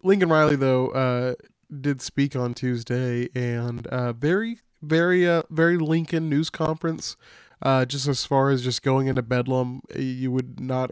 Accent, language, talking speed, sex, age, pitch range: American, English, 160 wpm, male, 20-39, 125-145 Hz